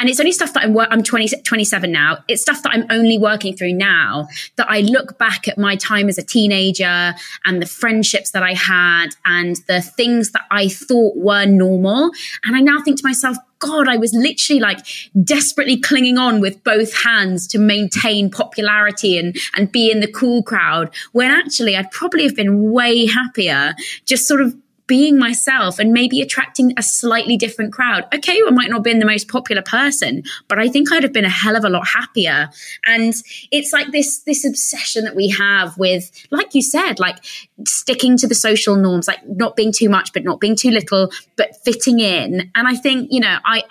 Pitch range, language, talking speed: 195-250 Hz, English, 205 wpm